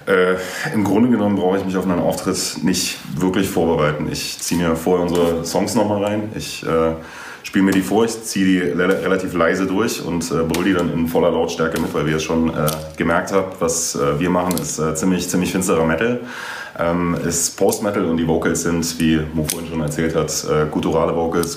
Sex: male